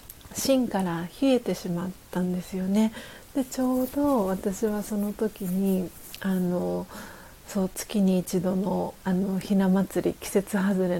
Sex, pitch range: female, 180-215 Hz